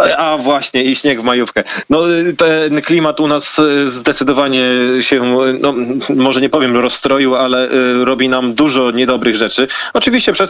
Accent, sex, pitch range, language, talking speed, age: native, male, 125-150 Hz, Polish, 150 wpm, 30-49